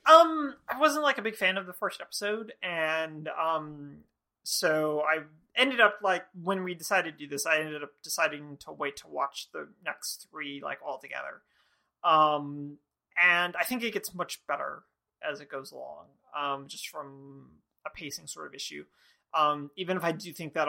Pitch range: 140-180 Hz